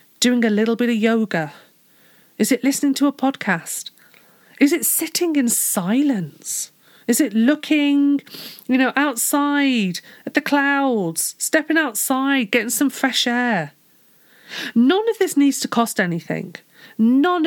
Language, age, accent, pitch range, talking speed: English, 40-59, British, 200-280 Hz, 135 wpm